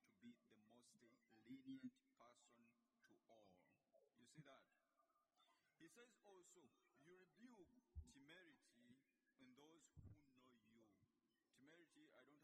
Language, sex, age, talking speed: English, male, 50-69, 110 wpm